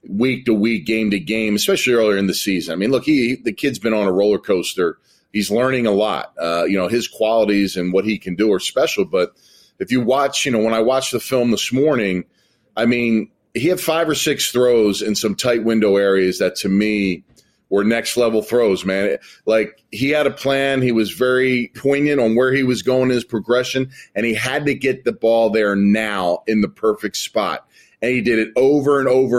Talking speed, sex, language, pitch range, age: 210 wpm, male, English, 110-135 Hz, 30-49